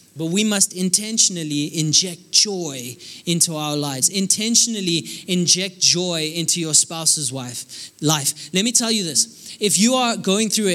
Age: 20-39